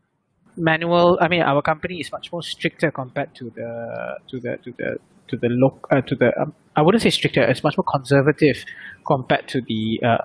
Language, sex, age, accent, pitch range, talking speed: English, male, 20-39, Malaysian, 145-175 Hz, 205 wpm